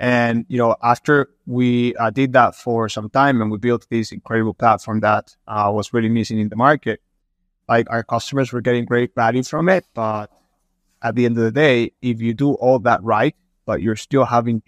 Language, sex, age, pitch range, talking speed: English, male, 20-39, 105-120 Hz, 210 wpm